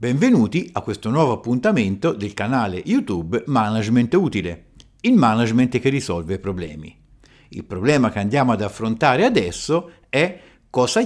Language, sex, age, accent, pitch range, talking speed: Italian, male, 50-69, native, 100-145 Hz, 130 wpm